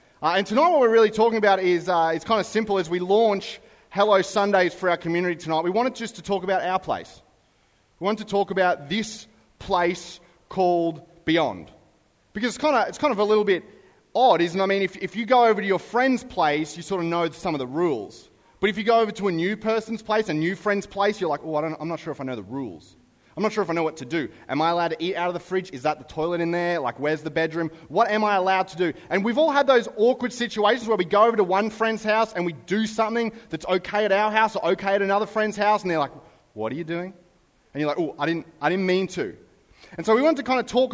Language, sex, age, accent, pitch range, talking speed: English, male, 30-49, Australian, 165-215 Hz, 270 wpm